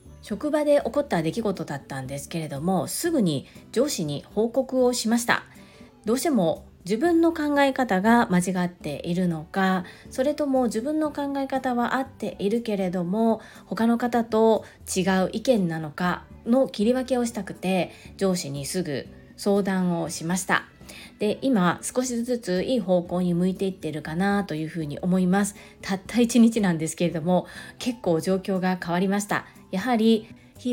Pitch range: 175-240 Hz